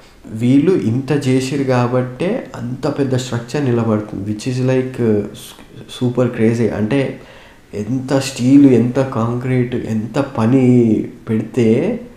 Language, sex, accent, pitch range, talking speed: Telugu, male, native, 110-130 Hz, 105 wpm